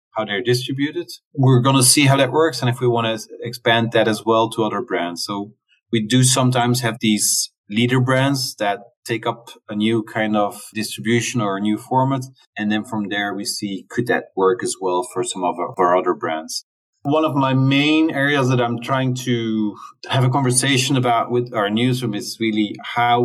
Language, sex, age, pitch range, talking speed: English, male, 30-49, 105-125 Hz, 200 wpm